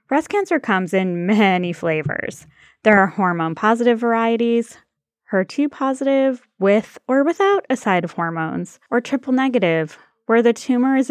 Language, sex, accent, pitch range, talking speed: English, female, American, 180-245 Hz, 130 wpm